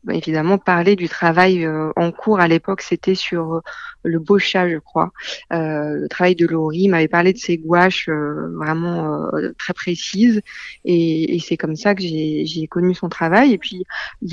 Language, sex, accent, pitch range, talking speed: French, female, French, 165-190 Hz, 185 wpm